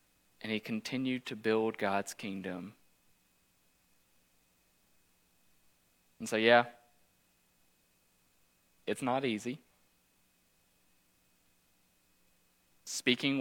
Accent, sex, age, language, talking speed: American, male, 20-39, English, 65 wpm